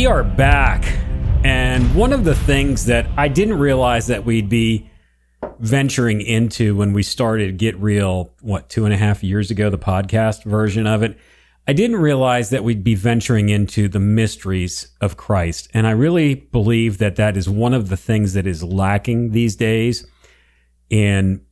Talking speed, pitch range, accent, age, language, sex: 175 wpm, 100-120 Hz, American, 40-59, English, male